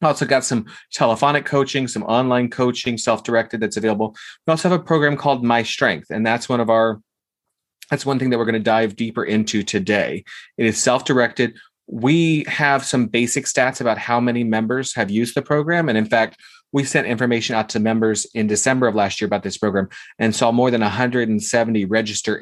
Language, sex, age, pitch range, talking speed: English, male, 30-49, 110-135 Hz, 200 wpm